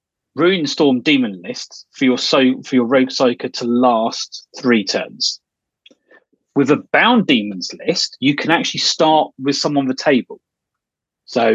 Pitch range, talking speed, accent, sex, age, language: 125-185 Hz, 155 wpm, British, male, 30-49, English